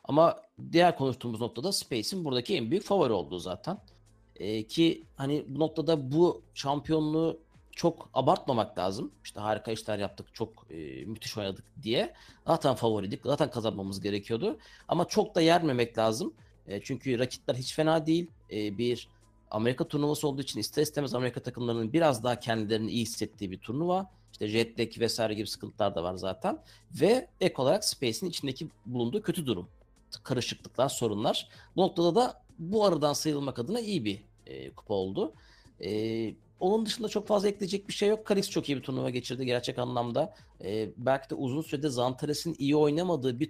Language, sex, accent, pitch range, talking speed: Turkish, male, native, 110-160 Hz, 165 wpm